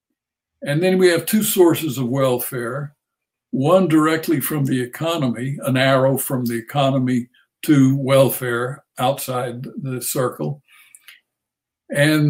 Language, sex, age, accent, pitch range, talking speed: English, male, 60-79, American, 130-160 Hz, 115 wpm